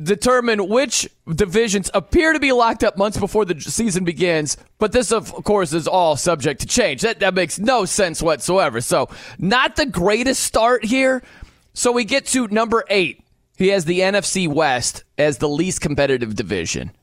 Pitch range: 140-200 Hz